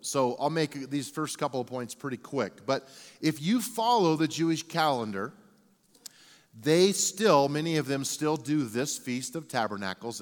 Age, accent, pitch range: 40-59, American, 125-160 Hz